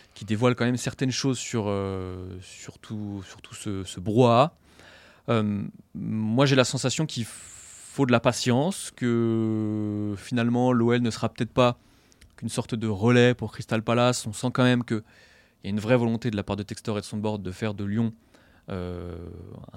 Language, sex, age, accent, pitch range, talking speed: French, male, 20-39, French, 100-125 Hz, 190 wpm